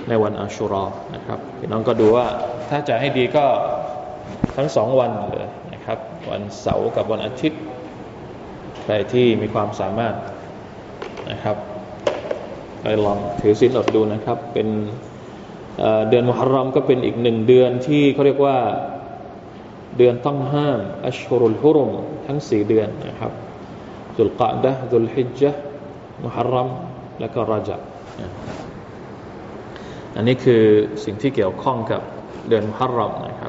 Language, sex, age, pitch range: Thai, male, 20-39, 105-130 Hz